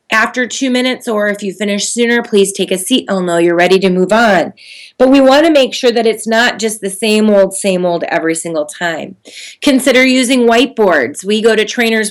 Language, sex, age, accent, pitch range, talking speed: English, female, 30-49, American, 195-250 Hz, 220 wpm